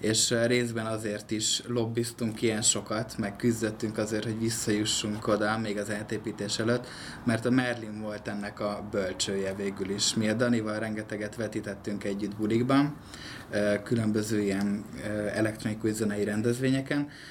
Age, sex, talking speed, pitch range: 20-39, male, 130 wpm, 105-120 Hz